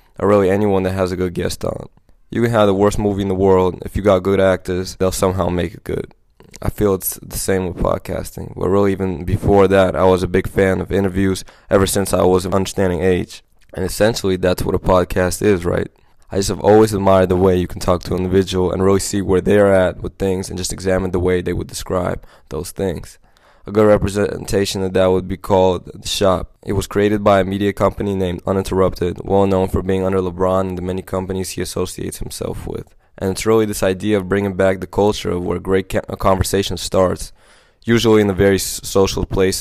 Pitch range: 95-100 Hz